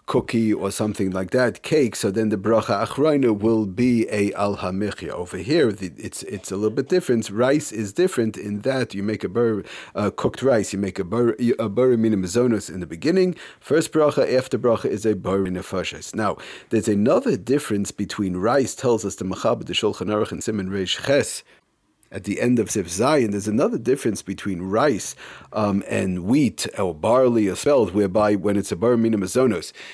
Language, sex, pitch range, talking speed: English, male, 100-120 Hz, 185 wpm